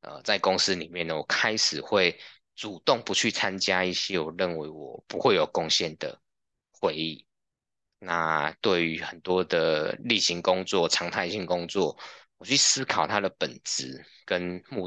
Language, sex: Chinese, male